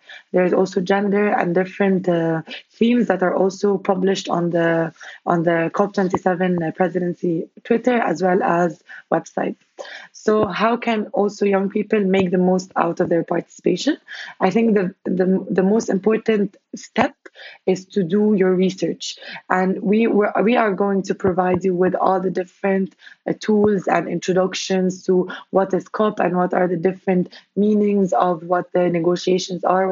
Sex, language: female, English